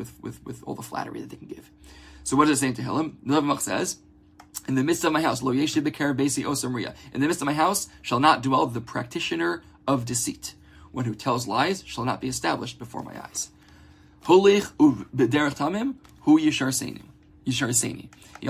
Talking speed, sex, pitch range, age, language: 190 wpm, male, 100-145 Hz, 20-39, English